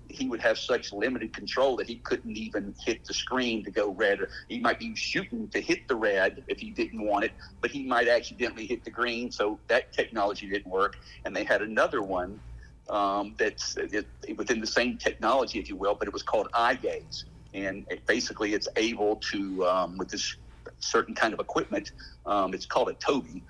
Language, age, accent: English, 50-69, American